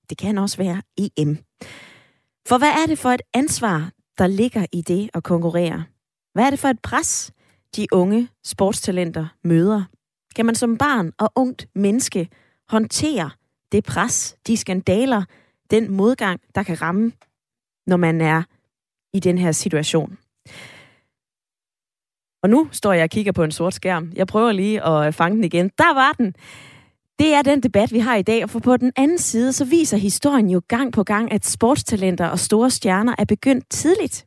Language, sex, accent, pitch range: Danish, female, native, 180-245 Hz